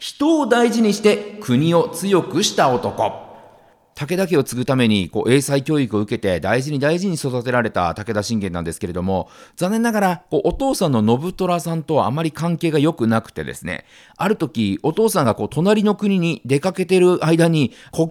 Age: 40-59